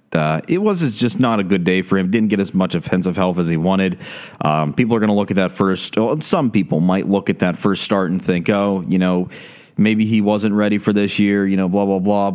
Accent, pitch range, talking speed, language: American, 95-115 Hz, 260 wpm, English